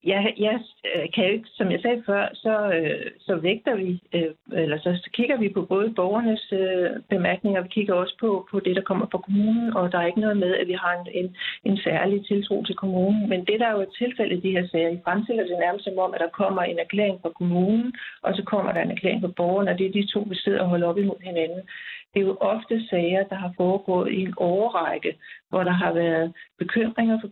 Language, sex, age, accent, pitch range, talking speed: Danish, female, 60-79, native, 180-210 Hz, 240 wpm